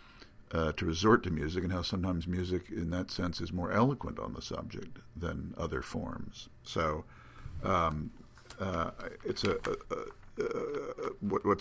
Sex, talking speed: male, 165 wpm